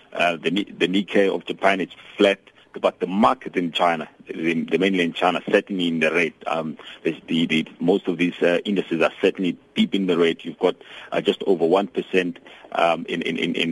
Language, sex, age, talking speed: English, male, 50-69, 200 wpm